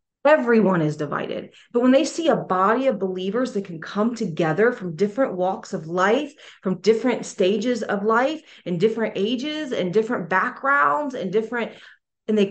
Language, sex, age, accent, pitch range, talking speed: English, female, 30-49, American, 175-225 Hz, 170 wpm